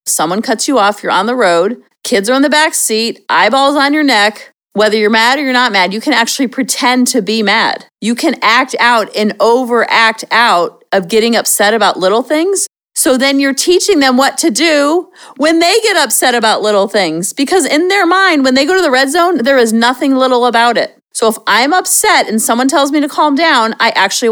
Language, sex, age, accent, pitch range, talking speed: English, female, 40-59, American, 210-275 Hz, 220 wpm